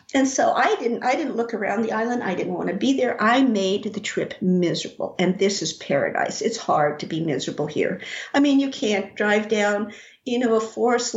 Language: English